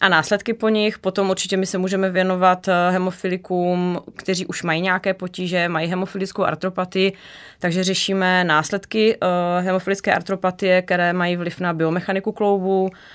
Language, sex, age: Czech, female, 20-39